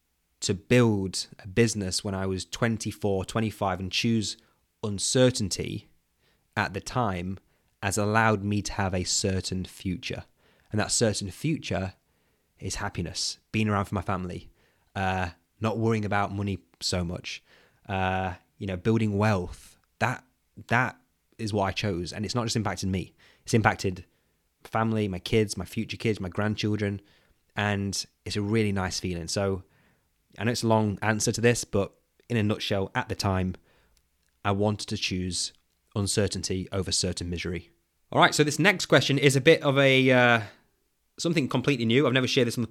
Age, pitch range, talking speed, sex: 20-39, 95-115 Hz, 165 wpm, male